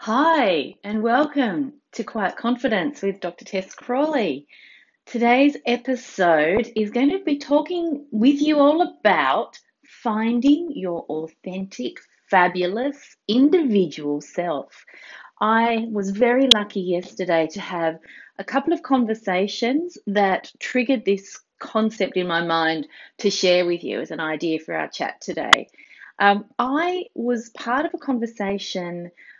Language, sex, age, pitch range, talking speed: English, female, 30-49, 185-255 Hz, 130 wpm